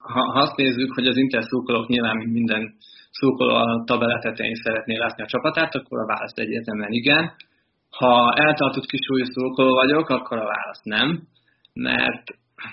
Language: Hungarian